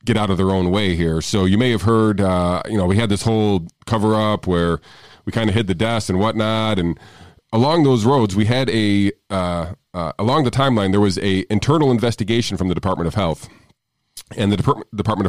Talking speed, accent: 220 wpm, American